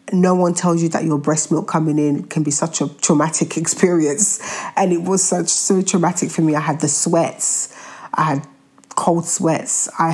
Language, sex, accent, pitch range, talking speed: English, female, British, 145-170 Hz, 195 wpm